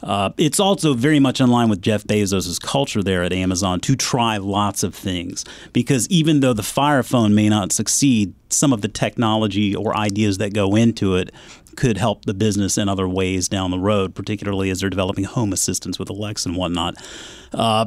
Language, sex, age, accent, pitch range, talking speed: English, male, 40-59, American, 105-140 Hz, 200 wpm